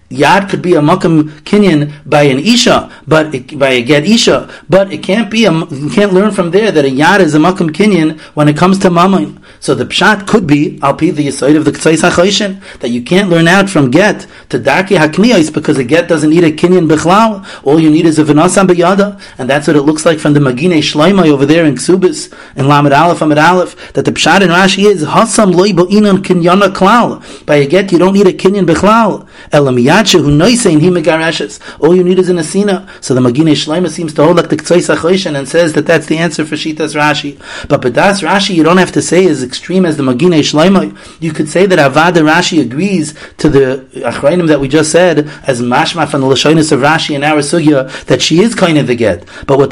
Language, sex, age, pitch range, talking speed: English, male, 30-49, 150-190 Hz, 215 wpm